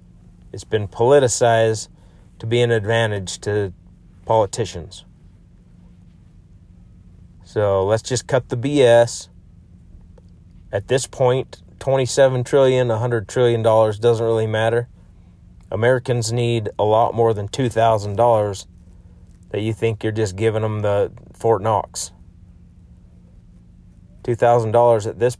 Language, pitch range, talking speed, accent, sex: English, 90-120 Hz, 105 wpm, American, male